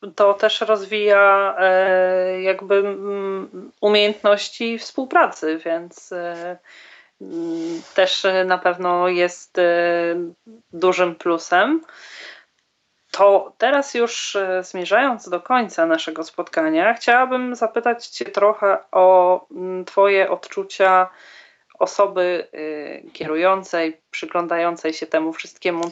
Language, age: Polish, 30-49